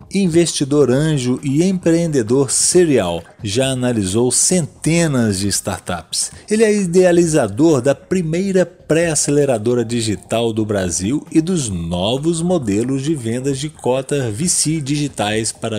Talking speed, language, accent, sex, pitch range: 115 wpm, Portuguese, Brazilian, male, 115-155 Hz